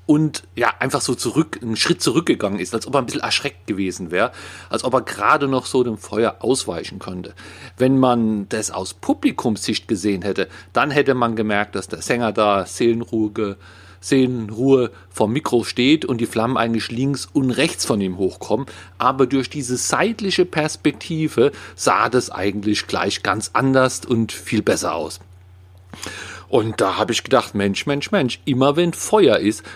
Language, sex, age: German, male, 40-59